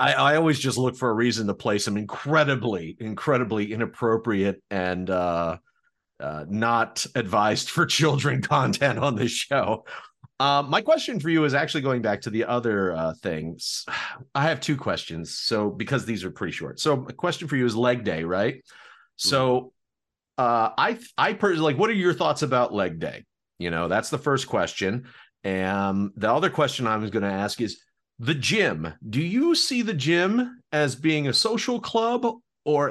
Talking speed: 180 wpm